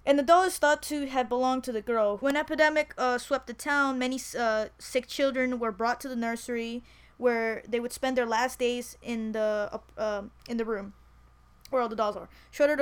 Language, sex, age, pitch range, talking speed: English, female, 20-39, 220-255 Hz, 215 wpm